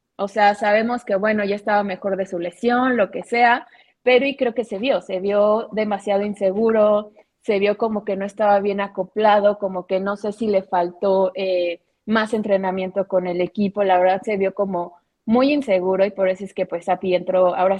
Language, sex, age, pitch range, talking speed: Spanish, female, 20-39, 190-220 Hz, 205 wpm